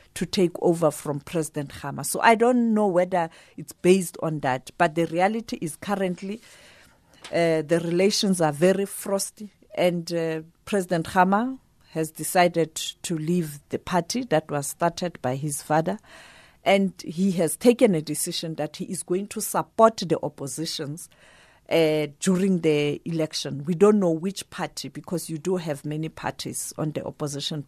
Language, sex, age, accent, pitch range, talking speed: English, female, 40-59, South African, 150-190 Hz, 160 wpm